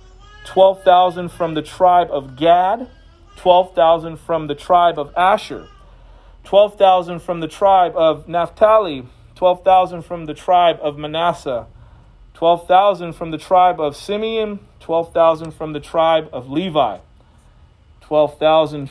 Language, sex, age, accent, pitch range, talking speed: English, male, 40-59, American, 130-165 Hz, 115 wpm